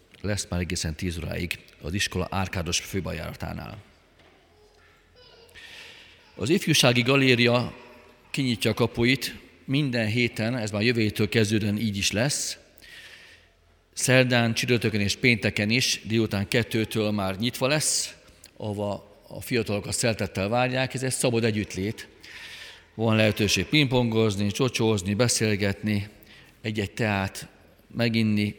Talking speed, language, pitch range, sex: 105 wpm, Hungarian, 95-115 Hz, male